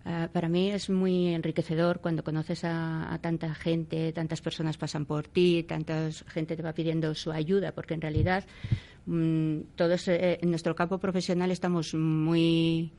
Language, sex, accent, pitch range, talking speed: Spanish, female, Spanish, 160-180 Hz, 165 wpm